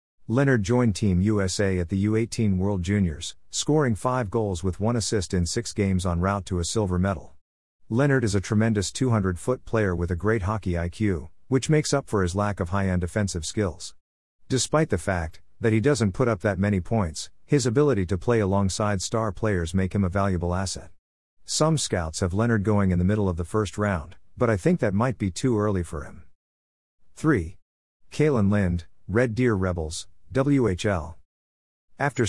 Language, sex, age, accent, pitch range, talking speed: English, male, 50-69, American, 90-115 Hz, 180 wpm